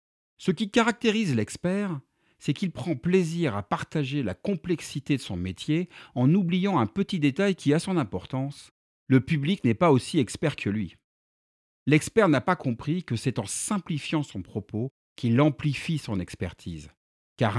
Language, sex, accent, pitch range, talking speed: French, male, French, 105-155 Hz, 160 wpm